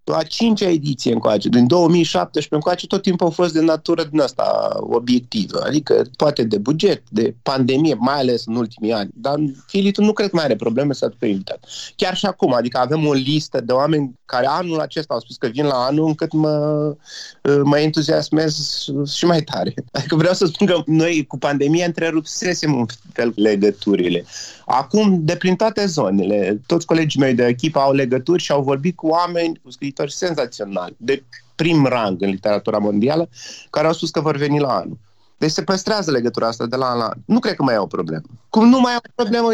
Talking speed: 195 wpm